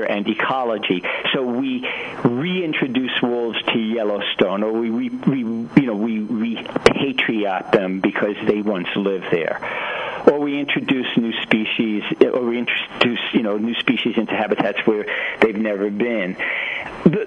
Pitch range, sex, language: 110-175 Hz, male, English